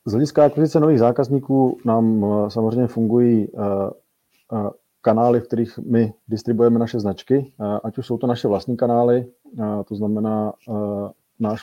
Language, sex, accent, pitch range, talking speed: Czech, male, native, 105-115 Hz, 130 wpm